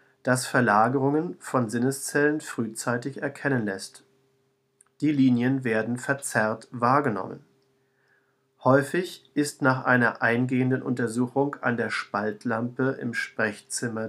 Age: 40-59